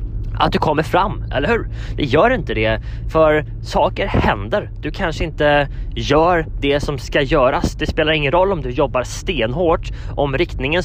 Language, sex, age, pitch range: Swedish, male, 20-39, 110-140 Hz